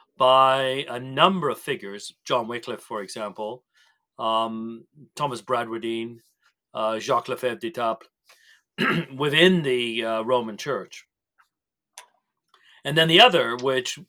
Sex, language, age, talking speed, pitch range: male, English, 40-59, 110 wpm, 110-135 Hz